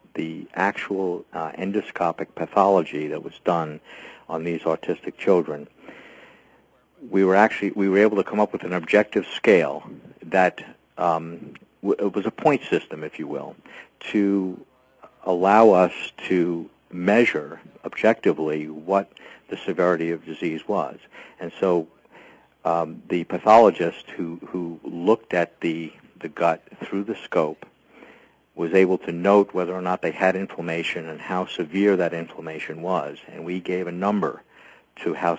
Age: 50-69